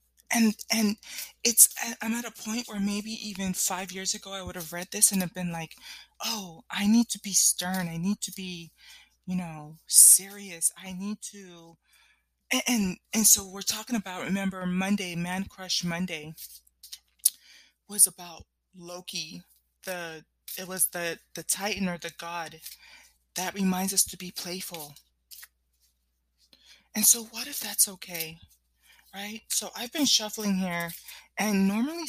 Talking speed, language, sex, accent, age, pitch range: 155 wpm, English, female, American, 20-39, 170-215 Hz